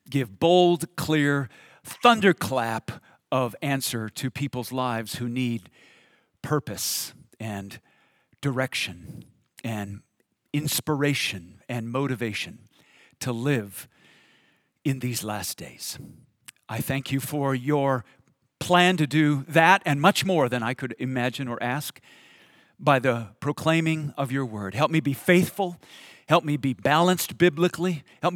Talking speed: 125 wpm